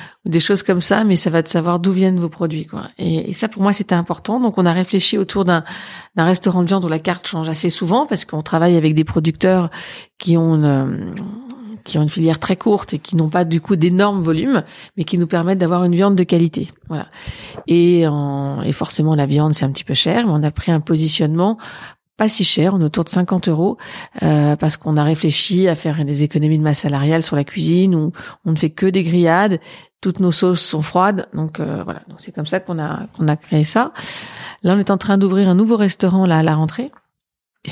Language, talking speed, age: French, 240 wpm, 40-59